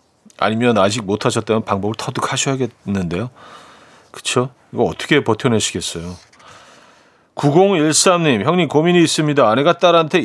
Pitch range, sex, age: 110-155 Hz, male, 40-59